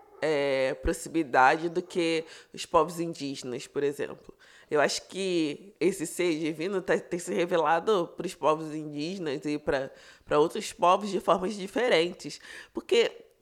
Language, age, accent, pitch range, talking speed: Portuguese, 20-39, Brazilian, 165-210 Hz, 130 wpm